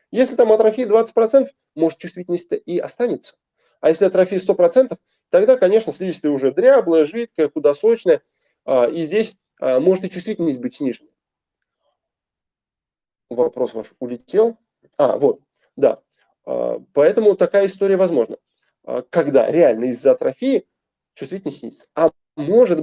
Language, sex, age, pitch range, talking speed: Russian, male, 20-39, 170-275 Hz, 120 wpm